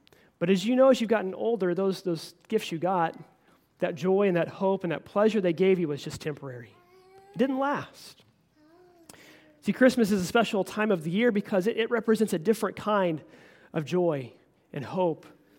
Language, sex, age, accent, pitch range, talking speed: English, male, 30-49, American, 175-225 Hz, 195 wpm